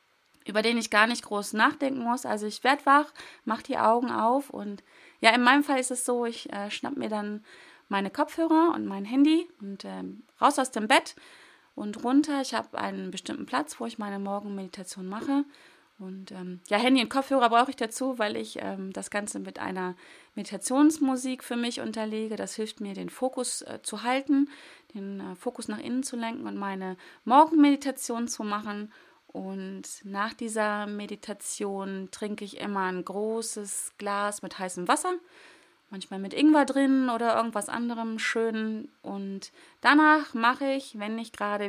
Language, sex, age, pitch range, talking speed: German, female, 30-49, 205-265 Hz, 175 wpm